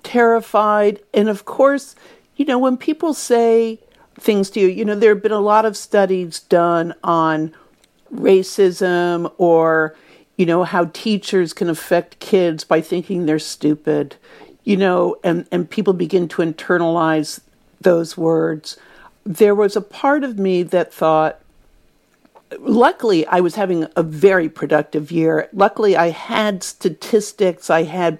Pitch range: 165-210 Hz